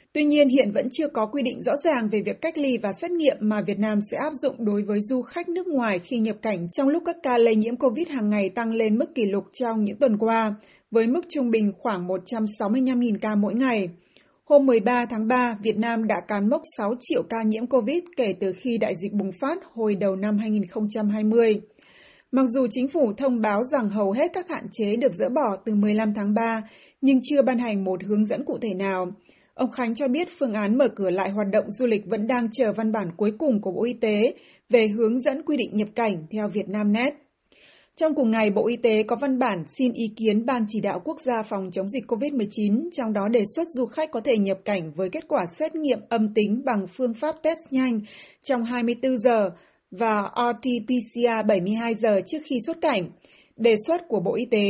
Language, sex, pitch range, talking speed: Vietnamese, female, 210-265 Hz, 225 wpm